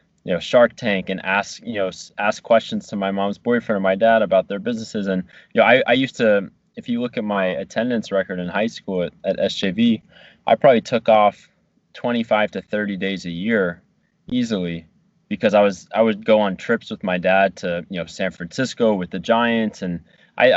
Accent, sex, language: American, male, English